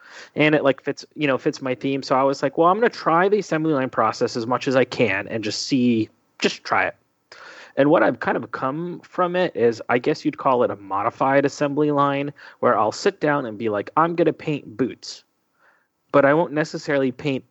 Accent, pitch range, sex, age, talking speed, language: American, 125-155 Hz, male, 30-49, 235 wpm, English